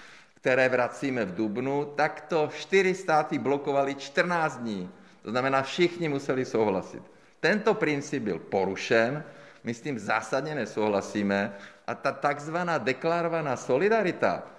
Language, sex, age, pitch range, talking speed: Czech, male, 50-69, 125-160 Hz, 125 wpm